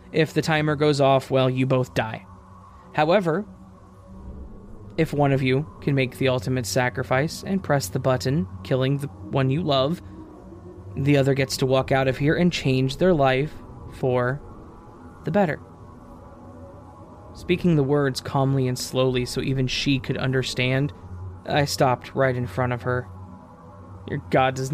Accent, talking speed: American, 155 wpm